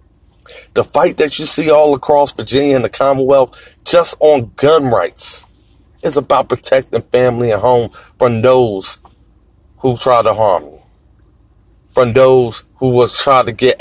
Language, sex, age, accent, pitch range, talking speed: English, male, 40-59, American, 100-130 Hz, 150 wpm